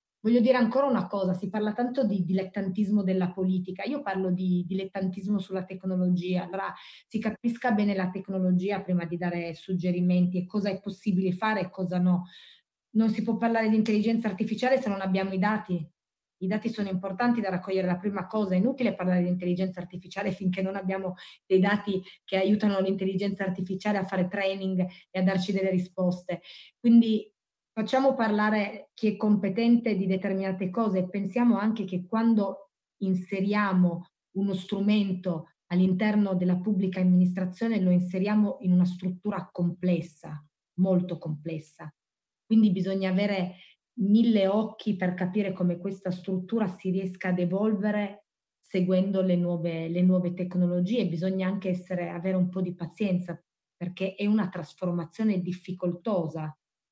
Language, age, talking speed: Italian, 20-39, 150 wpm